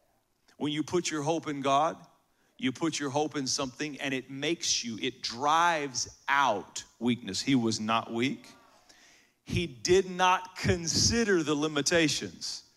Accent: American